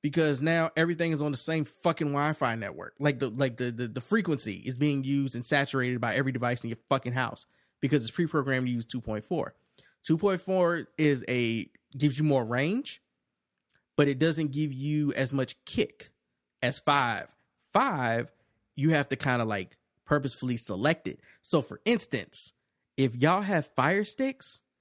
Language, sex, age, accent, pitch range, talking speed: English, male, 20-39, American, 125-170 Hz, 170 wpm